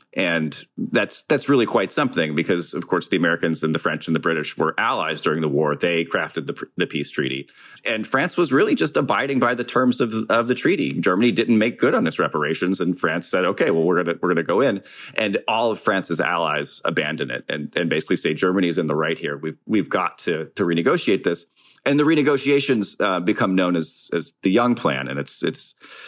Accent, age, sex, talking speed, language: American, 30-49, male, 225 wpm, English